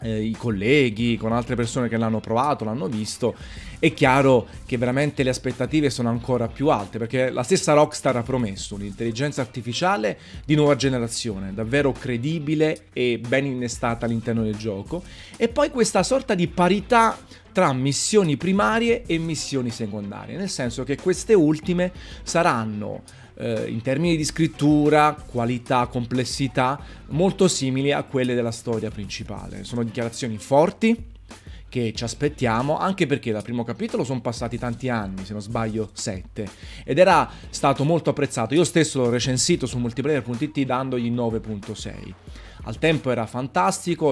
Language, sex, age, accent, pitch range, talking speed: Italian, male, 30-49, native, 115-155 Hz, 145 wpm